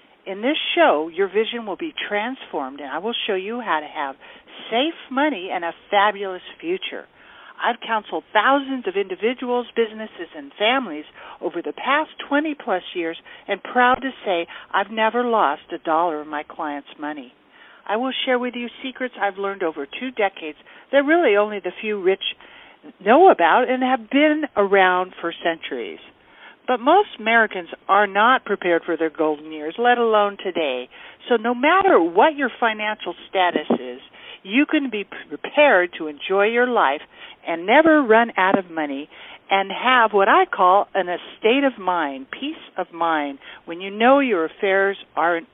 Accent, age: American, 60-79